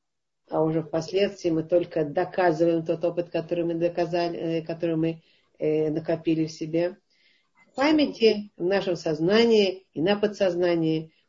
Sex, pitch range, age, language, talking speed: female, 160-200 Hz, 50-69, Russian, 130 wpm